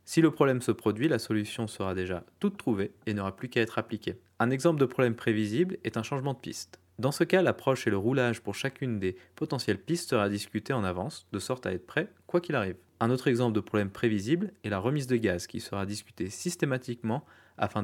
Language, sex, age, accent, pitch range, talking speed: French, male, 20-39, French, 100-135 Hz, 225 wpm